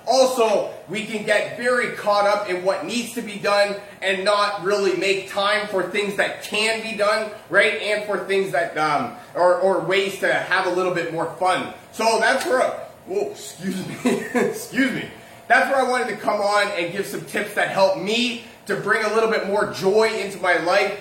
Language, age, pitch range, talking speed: English, 30-49, 180-215 Hz, 205 wpm